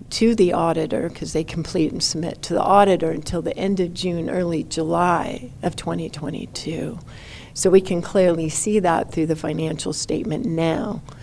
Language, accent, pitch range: English, American, 165-185 Hz